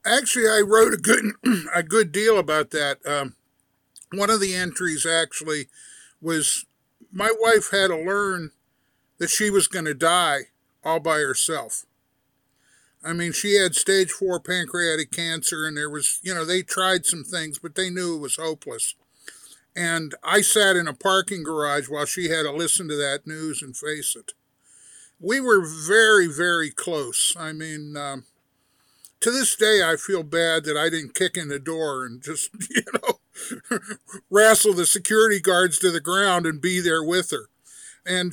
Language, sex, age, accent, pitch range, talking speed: English, male, 50-69, American, 155-195 Hz, 170 wpm